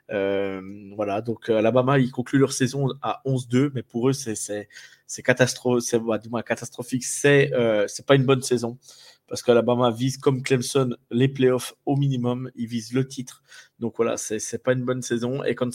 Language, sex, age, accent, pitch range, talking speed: French, male, 20-39, French, 115-135 Hz, 200 wpm